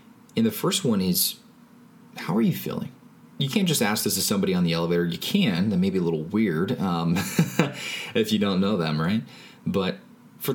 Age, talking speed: 20-39, 205 wpm